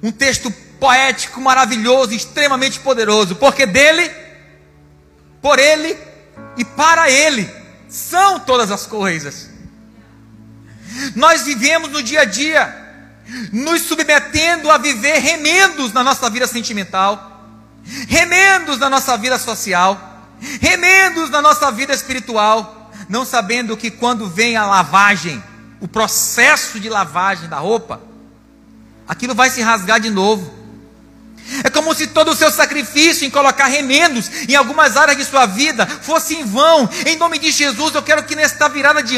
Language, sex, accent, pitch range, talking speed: Portuguese, male, Brazilian, 230-310 Hz, 140 wpm